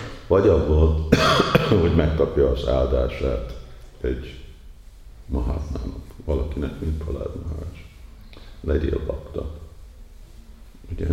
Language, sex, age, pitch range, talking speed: Hungarian, male, 50-69, 70-80 Hz, 80 wpm